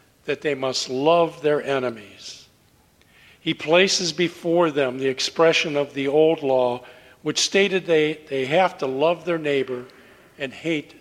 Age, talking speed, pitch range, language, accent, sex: 50-69, 145 wpm, 130-165 Hz, English, American, male